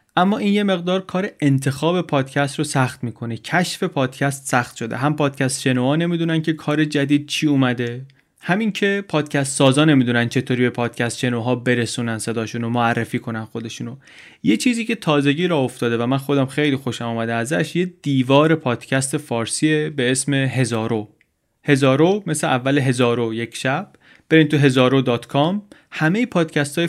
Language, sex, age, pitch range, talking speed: Persian, male, 30-49, 125-160 Hz, 160 wpm